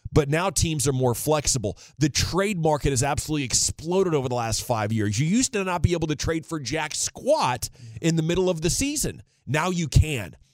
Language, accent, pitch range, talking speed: English, American, 120-155 Hz, 210 wpm